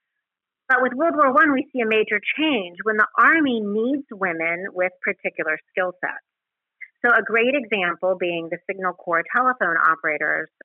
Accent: American